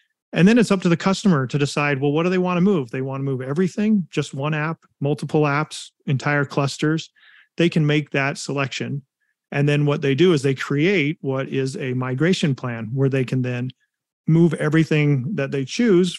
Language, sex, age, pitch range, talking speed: English, male, 40-59, 135-160 Hz, 205 wpm